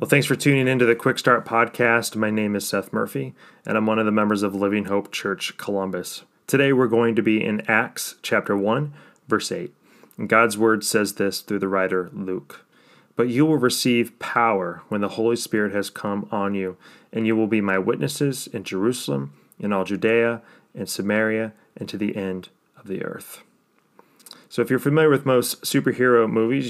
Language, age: English, 30-49